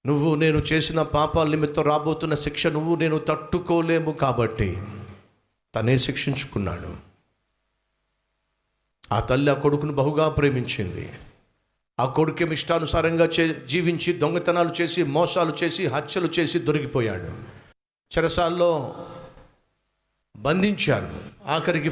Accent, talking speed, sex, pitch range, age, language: native, 90 wpm, male, 125-165 Hz, 50-69, Telugu